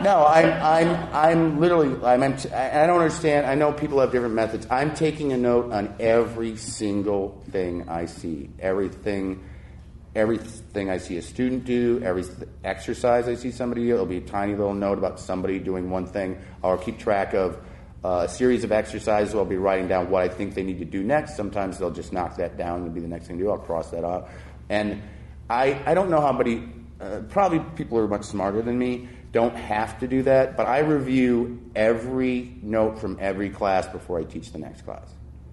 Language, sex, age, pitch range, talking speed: English, male, 30-49, 85-120 Hz, 205 wpm